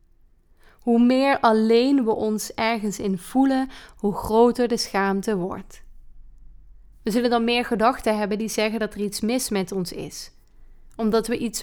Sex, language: female, Dutch